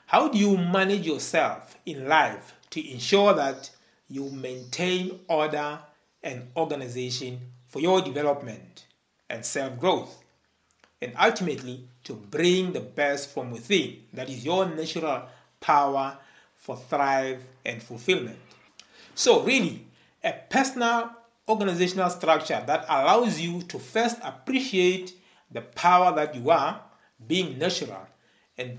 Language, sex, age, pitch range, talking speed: English, male, 60-79, 135-190 Hz, 120 wpm